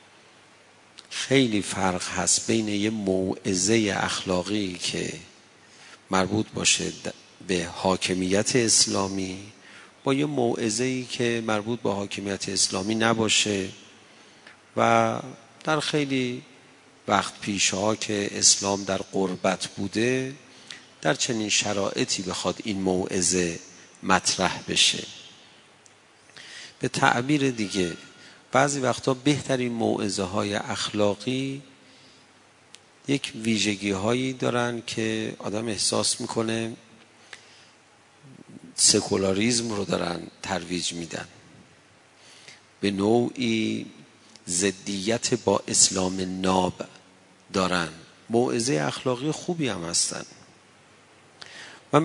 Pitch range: 95-125 Hz